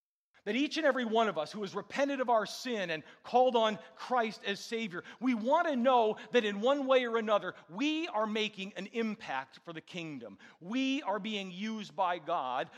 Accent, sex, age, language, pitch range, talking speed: American, male, 40-59, English, 195-255 Hz, 200 wpm